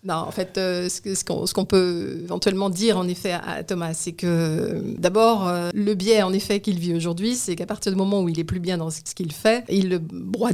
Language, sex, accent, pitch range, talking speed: French, female, French, 170-200 Hz, 220 wpm